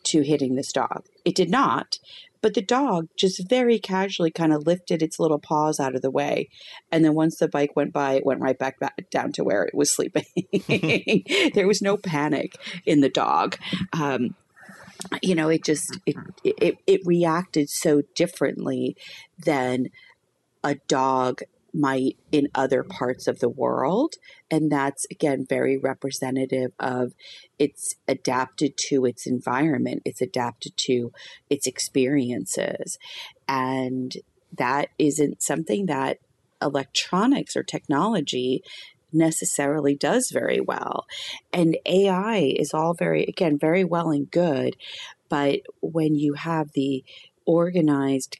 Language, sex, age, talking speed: English, female, 40-59, 140 wpm